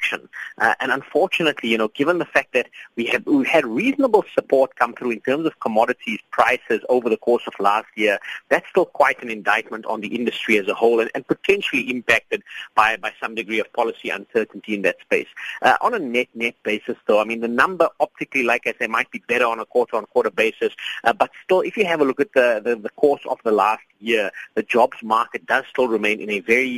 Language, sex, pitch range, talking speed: English, male, 115-155 Hz, 225 wpm